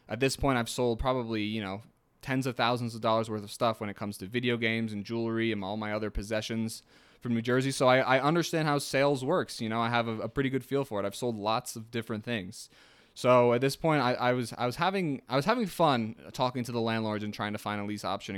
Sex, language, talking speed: male, English, 265 wpm